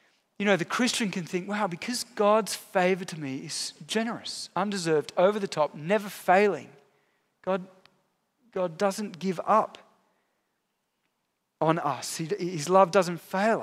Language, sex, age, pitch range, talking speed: English, male, 30-49, 155-210 Hz, 135 wpm